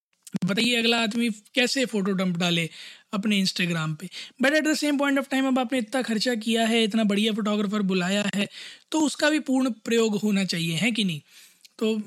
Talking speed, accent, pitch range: 195 wpm, native, 205-235 Hz